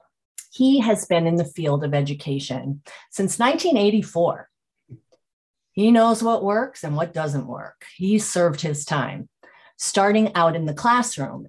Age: 40-59